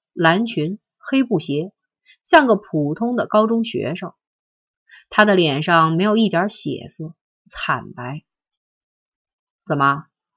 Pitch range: 165-275 Hz